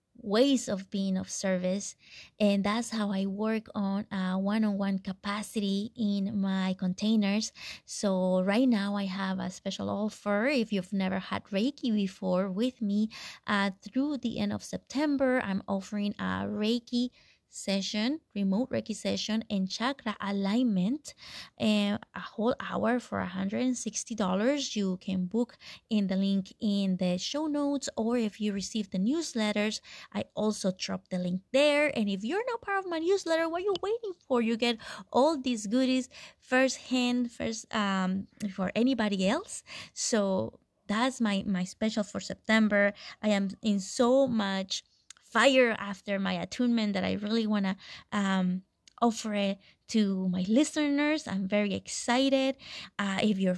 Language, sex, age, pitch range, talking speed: English, female, 20-39, 195-250 Hz, 155 wpm